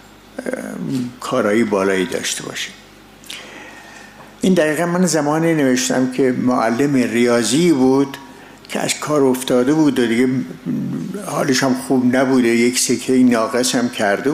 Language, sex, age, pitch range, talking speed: Persian, male, 60-79, 115-160 Hz, 120 wpm